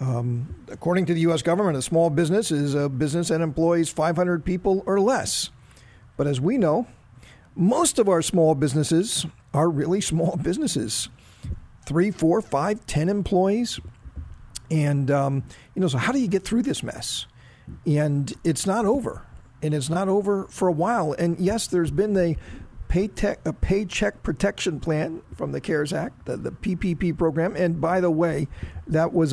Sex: male